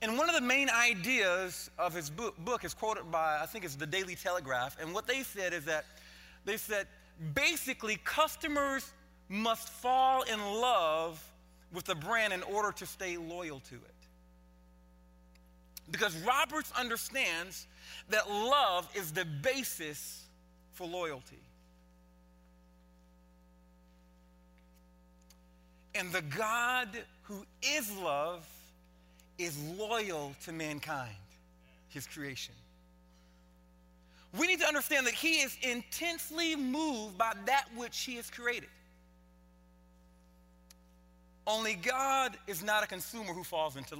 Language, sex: English, male